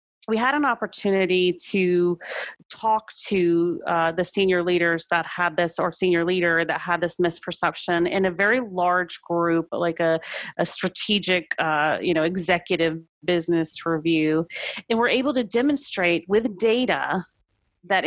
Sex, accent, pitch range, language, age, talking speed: female, American, 175-215 Hz, English, 30-49, 145 wpm